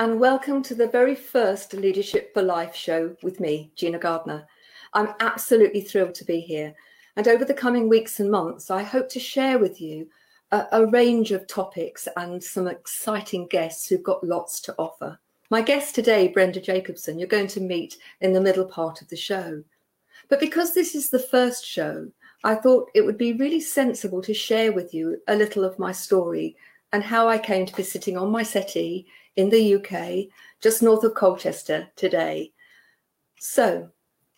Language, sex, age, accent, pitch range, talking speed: English, female, 50-69, British, 185-245 Hz, 185 wpm